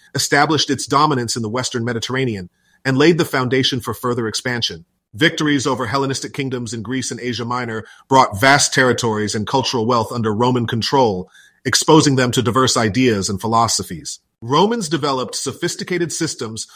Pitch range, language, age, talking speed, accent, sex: 120-150 Hz, English, 40-59, 155 wpm, American, male